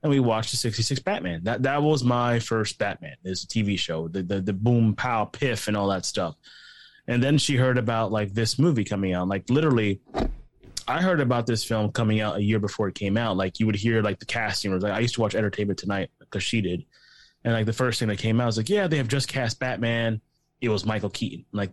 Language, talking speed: English, 250 wpm